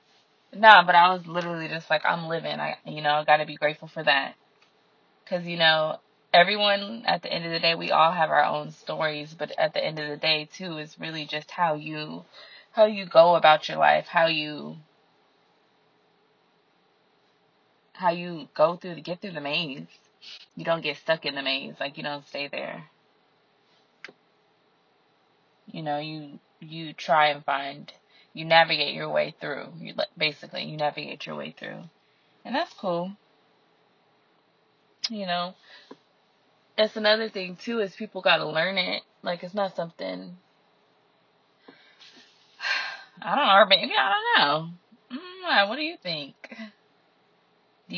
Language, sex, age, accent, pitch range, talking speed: English, female, 20-39, American, 150-195 Hz, 155 wpm